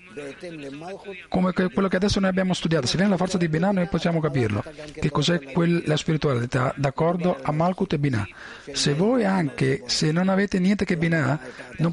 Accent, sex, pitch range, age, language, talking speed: native, male, 150-190 Hz, 40-59, Italian, 180 wpm